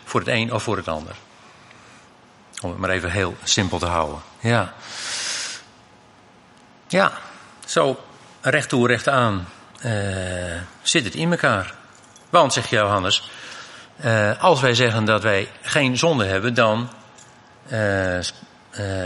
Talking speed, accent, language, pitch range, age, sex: 130 wpm, Dutch, Dutch, 105-155 Hz, 50-69, male